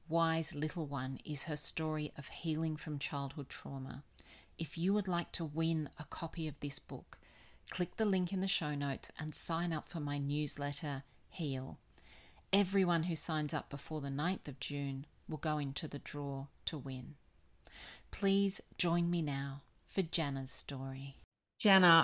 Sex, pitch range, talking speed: female, 140-160 Hz, 165 wpm